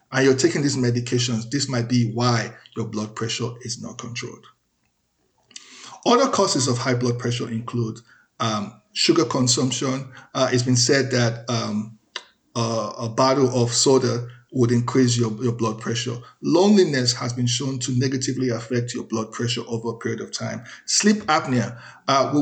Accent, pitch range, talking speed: Nigerian, 120-140 Hz, 165 wpm